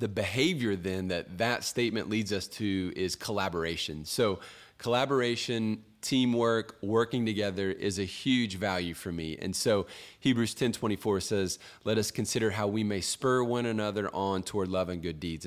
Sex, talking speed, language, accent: male, 165 wpm, English, American